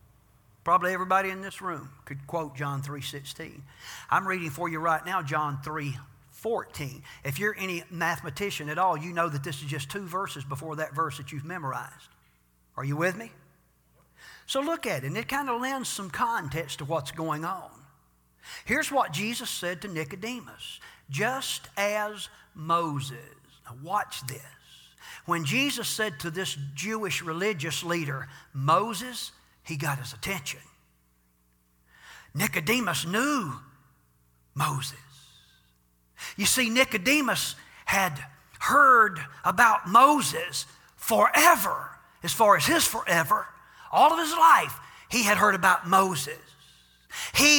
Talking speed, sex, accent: 135 wpm, male, American